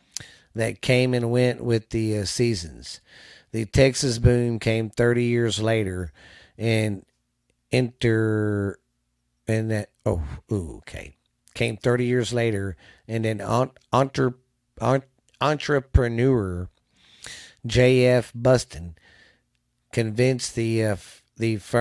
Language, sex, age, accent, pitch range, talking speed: English, male, 50-69, American, 100-120 Hz, 95 wpm